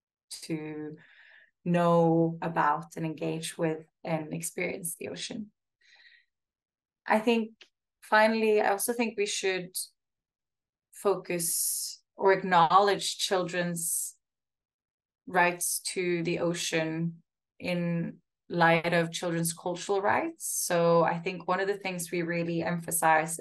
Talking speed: 110 wpm